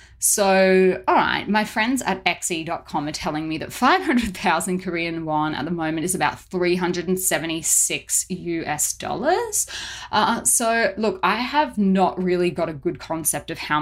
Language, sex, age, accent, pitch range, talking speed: English, female, 20-39, Australian, 160-190 Hz, 150 wpm